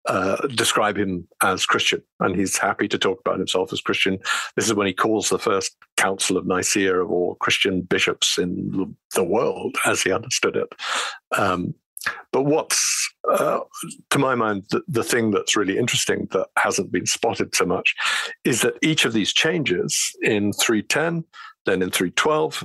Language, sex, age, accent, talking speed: English, male, 50-69, British, 170 wpm